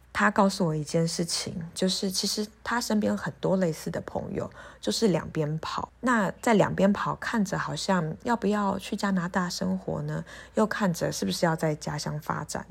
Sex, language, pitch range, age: female, Chinese, 160-200 Hz, 20-39